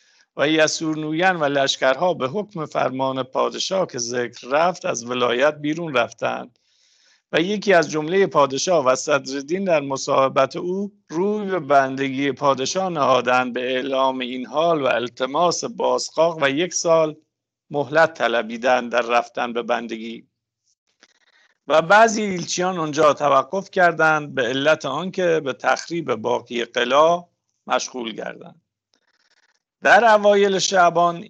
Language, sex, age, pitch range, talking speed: English, male, 50-69, 130-170 Hz, 120 wpm